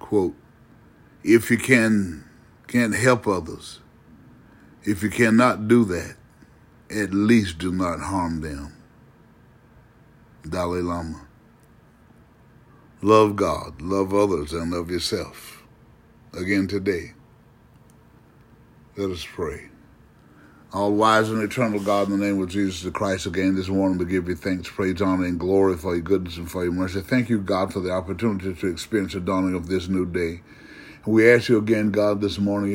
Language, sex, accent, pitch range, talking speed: English, male, American, 95-110 Hz, 150 wpm